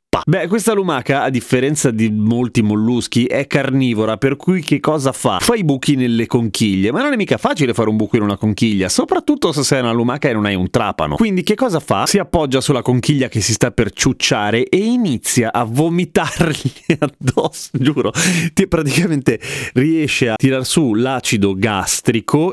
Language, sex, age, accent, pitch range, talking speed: Italian, male, 30-49, native, 110-160 Hz, 180 wpm